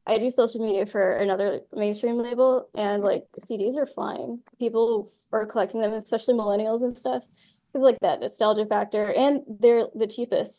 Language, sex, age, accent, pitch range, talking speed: English, female, 10-29, American, 205-235 Hz, 170 wpm